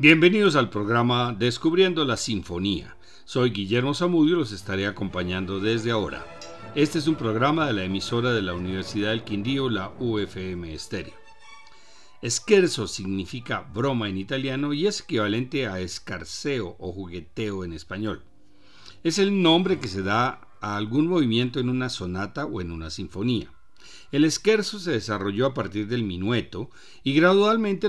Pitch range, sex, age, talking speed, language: 100-145 Hz, male, 50-69, 150 wpm, Spanish